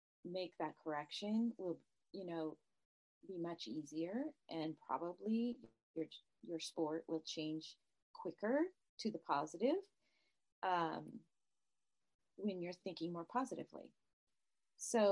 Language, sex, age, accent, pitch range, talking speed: English, female, 30-49, American, 160-210 Hz, 105 wpm